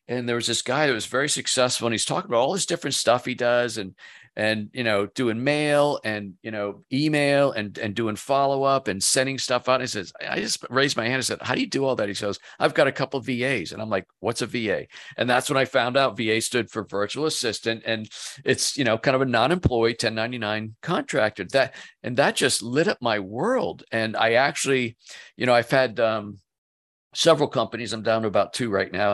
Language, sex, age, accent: English, male, 50-69, American